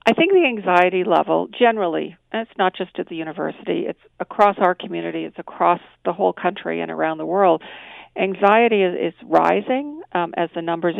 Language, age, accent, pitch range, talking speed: English, 50-69, American, 175-205 Hz, 185 wpm